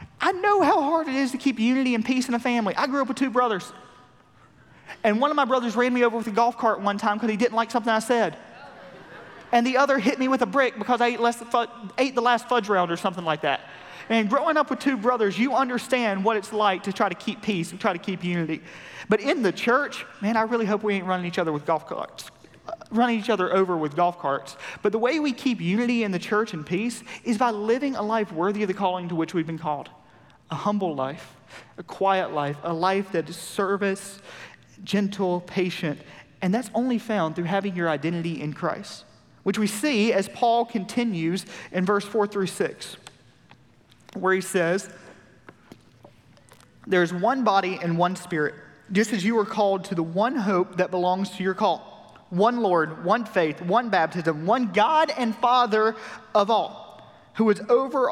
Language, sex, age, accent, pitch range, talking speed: English, male, 30-49, American, 180-235 Hz, 205 wpm